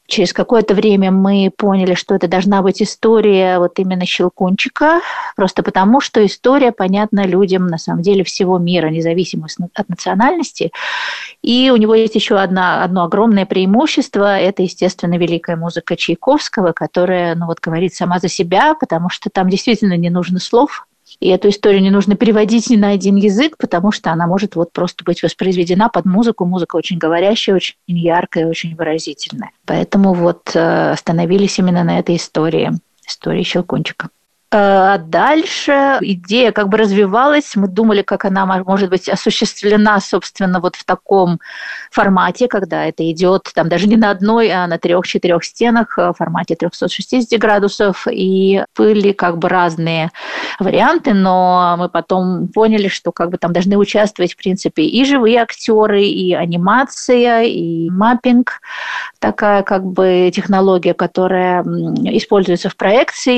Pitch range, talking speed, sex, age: 180-215 Hz, 150 wpm, female, 40-59